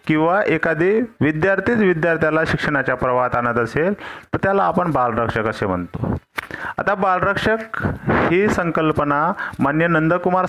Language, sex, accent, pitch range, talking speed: Marathi, male, native, 120-170 Hz, 115 wpm